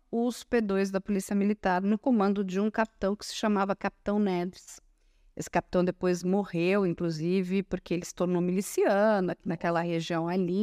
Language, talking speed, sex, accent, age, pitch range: Portuguese, 160 wpm, female, Brazilian, 50-69, 185-255 Hz